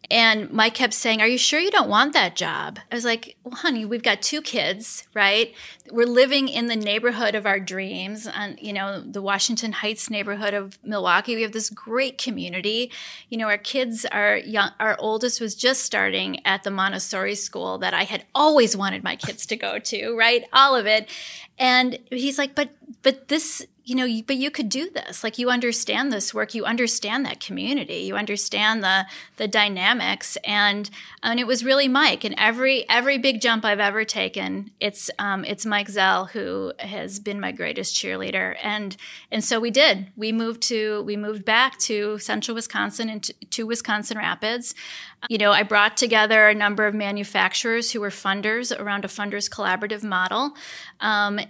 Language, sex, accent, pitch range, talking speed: English, female, American, 205-245 Hz, 185 wpm